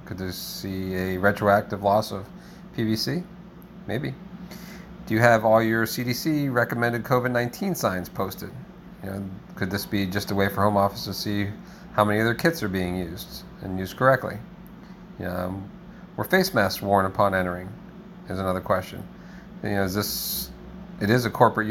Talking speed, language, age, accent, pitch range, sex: 170 wpm, English, 40-59, American, 100-145 Hz, male